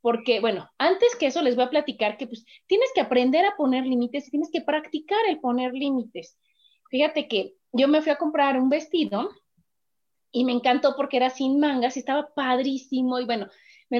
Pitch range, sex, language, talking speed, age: 245-325 Hz, female, Spanish, 195 wpm, 30-49